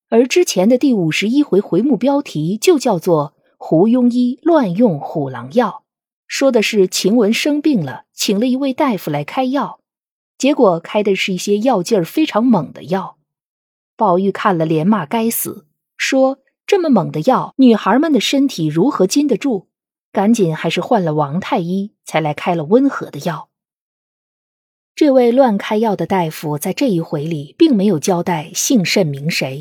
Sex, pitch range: female, 175-250 Hz